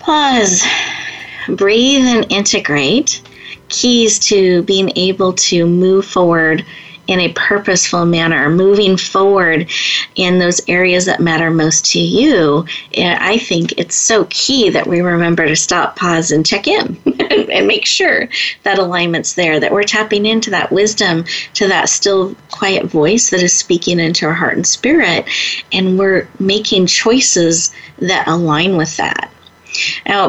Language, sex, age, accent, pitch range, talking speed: English, female, 30-49, American, 170-220 Hz, 145 wpm